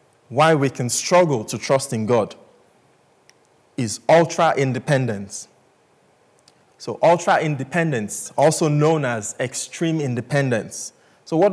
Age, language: 20-39, English